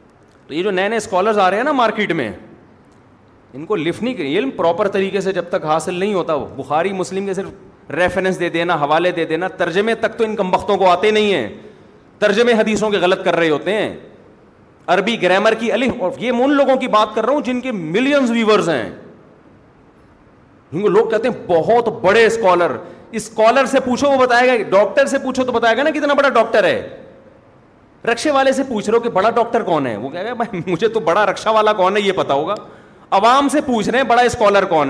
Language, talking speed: Urdu, 215 wpm